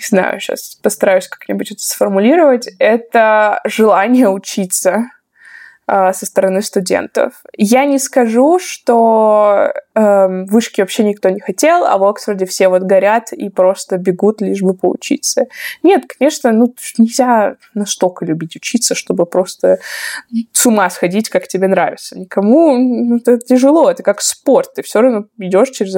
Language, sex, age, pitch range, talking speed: Russian, female, 20-39, 195-255 Hz, 145 wpm